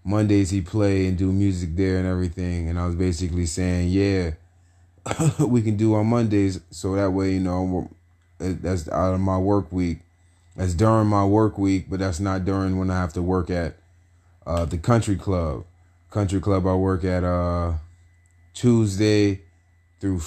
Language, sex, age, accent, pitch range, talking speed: English, male, 30-49, American, 90-100 Hz, 170 wpm